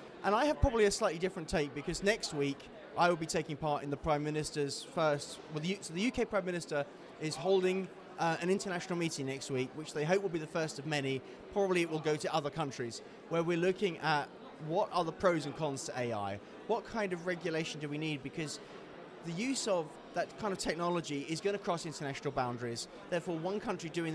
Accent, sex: British, male